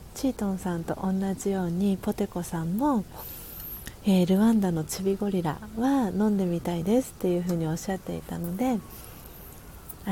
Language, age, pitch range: Japanese, 40-59, 170-210 Hz